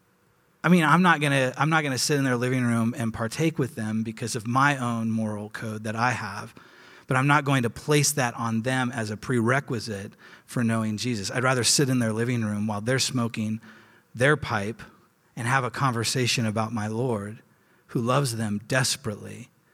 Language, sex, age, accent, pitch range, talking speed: English, male, 30-49, American, 115-140 Hz, 190 wpm